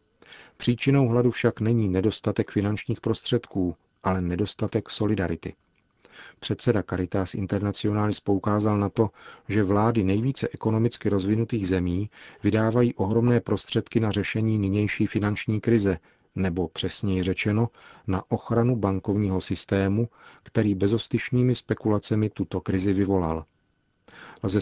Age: 40-59